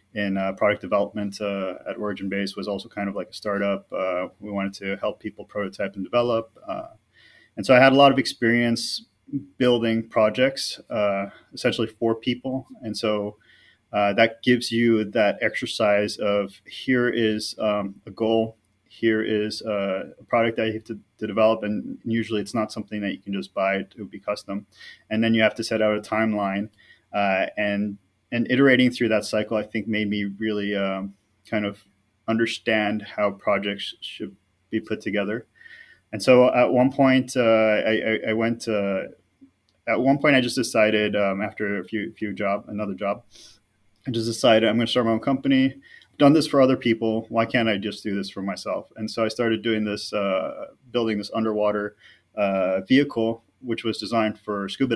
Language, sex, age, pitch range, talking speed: English, male, 30-49, 100-115 Hz, 190 wpm